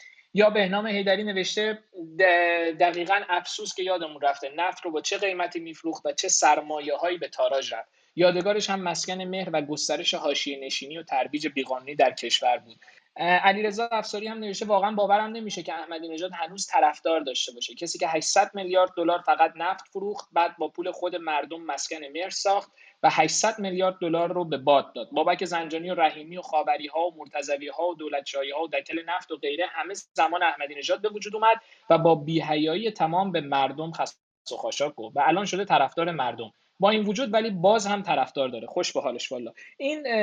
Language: Persian